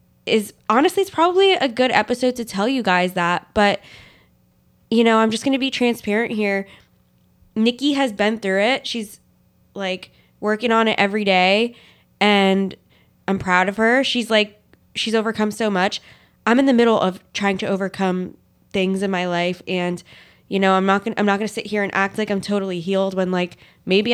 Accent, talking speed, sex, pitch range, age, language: American, 185 wpm, female, 180-220 Hz, 20-39, English